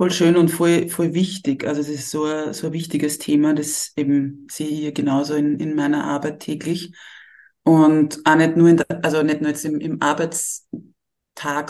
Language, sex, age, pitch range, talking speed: German, female, 20-39, 145-170 Hz, 195 wpm